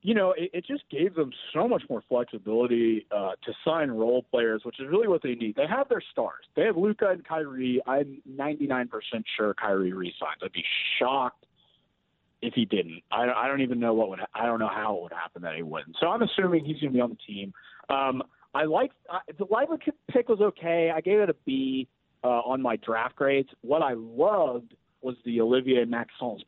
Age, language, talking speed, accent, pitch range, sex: 40-59, English, 220 wpm, American, 120-175 Hz, male